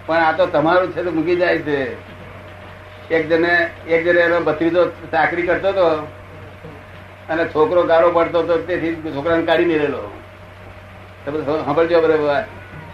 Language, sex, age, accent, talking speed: Gujarati, male, 60-79, native, 125 wpm